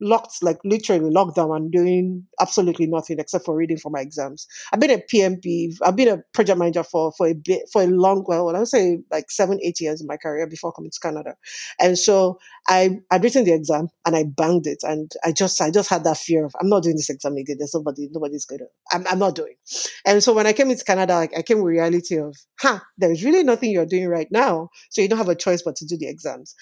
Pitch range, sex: 165-210 Hz, female